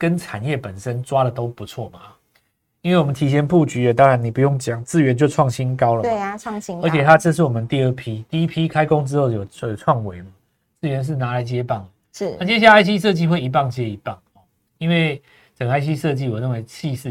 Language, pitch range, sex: Chinese, 110-160 Hz, male